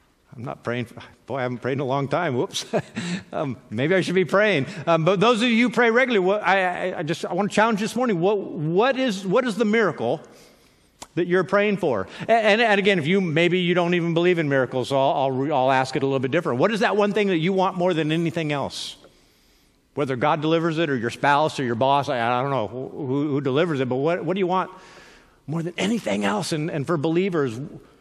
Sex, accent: male, American